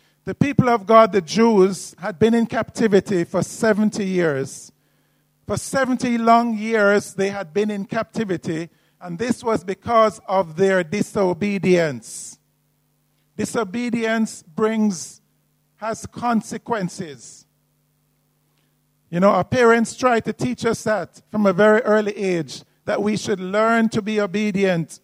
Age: 50-69